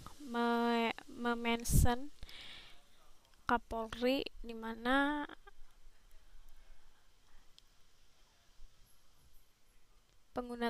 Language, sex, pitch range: Indonesian, female, 210-235 Hz